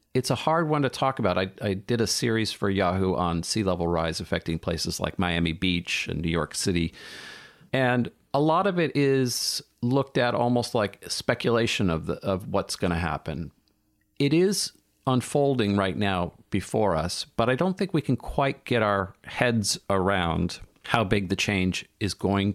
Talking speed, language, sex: 180 wpm, English, male